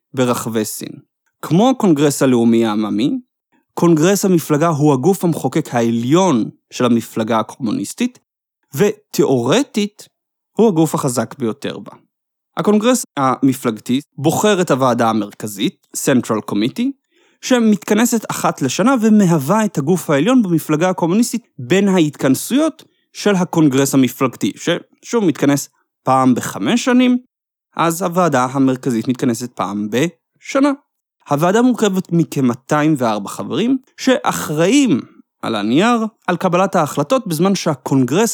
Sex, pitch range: male, 135-225 Hz